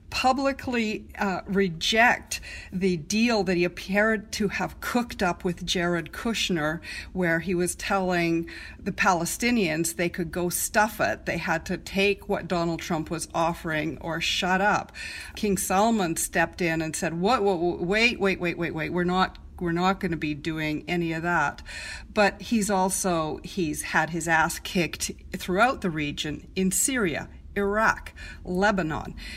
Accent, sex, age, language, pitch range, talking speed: American, female, 50-69, English, 170-195 Hz, 160 wpm